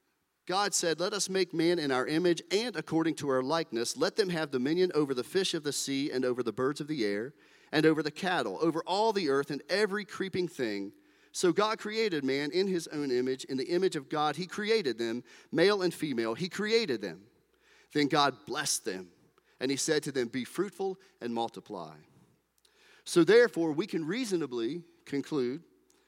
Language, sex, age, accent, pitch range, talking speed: English, male, 40-59, American, 130-185 Hz, 195 wpm